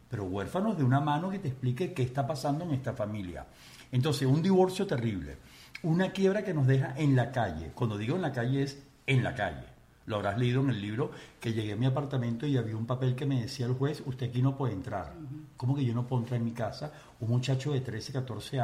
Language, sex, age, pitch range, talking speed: English, male, 60-79, 115-145 Hz, 240 wpm